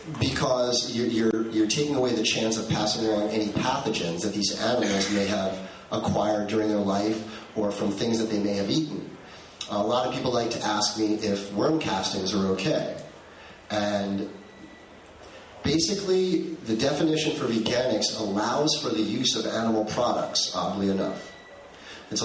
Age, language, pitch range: 30-49, English, 105-125 Hz